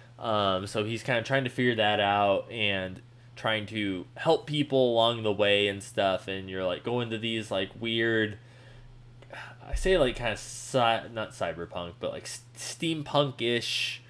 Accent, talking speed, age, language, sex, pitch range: American, 165 wpm, 20-39, English, male, 110-135 Hz